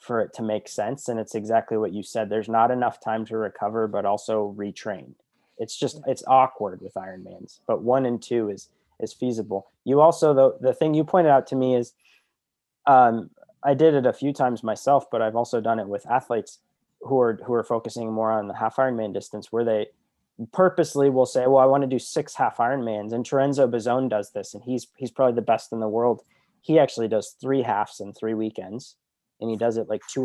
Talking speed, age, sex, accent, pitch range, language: 220 wpm, 20-39, male, American, 110-130 Hz, English